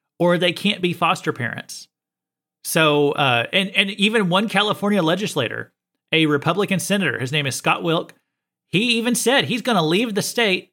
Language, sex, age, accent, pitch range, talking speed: English, male, 30-49, American, 145-190 Hz, 175 wpm